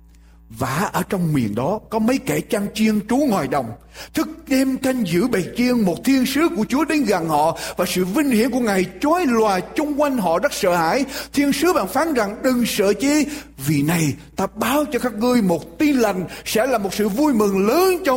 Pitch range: 175-280 Hz